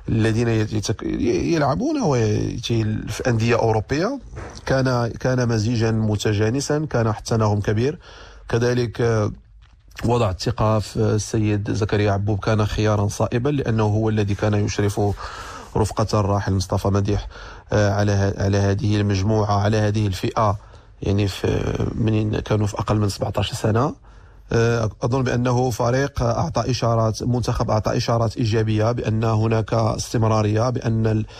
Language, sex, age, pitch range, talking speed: English, male, 40-59, 105-120 Hz, 110 wpm